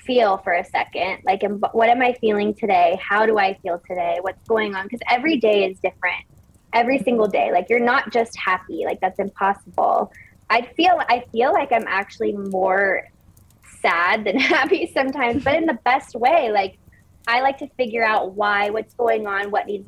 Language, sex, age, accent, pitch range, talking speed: English, female, 20-39, American, 185-245 Hz, 190 wpm